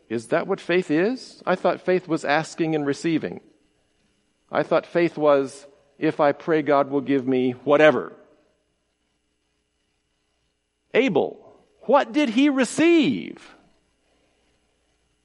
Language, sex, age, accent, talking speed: English, male, 50-69, American, 115 wpm